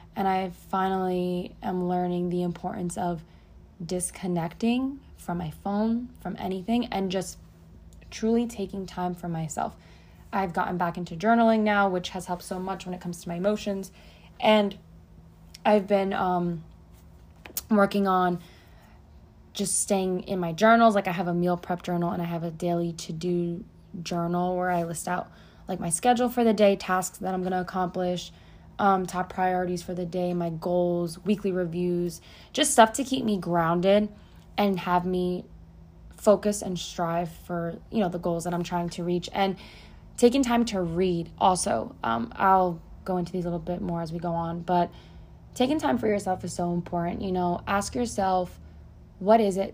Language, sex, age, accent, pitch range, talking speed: English, female, 20-39, American, 175-195 Hz, 175 wpm